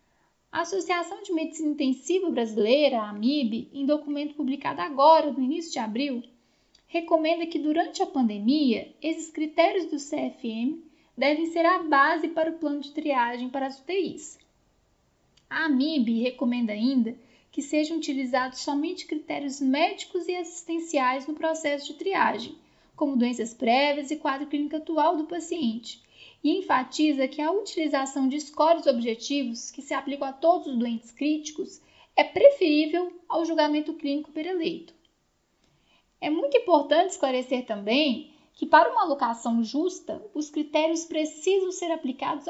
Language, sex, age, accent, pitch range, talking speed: Portuguese, female, 10-29, Brazilian, 260-330 Hz, 140 wpm